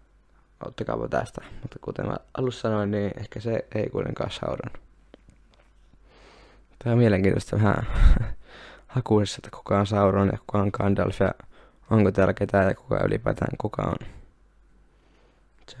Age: 20-39